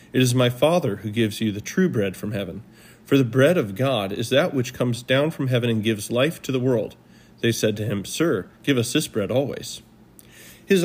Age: 40-59